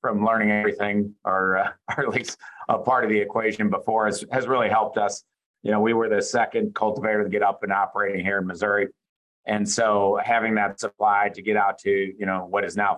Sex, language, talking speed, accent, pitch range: male, English, 220 wpm, American, 100-110 Hz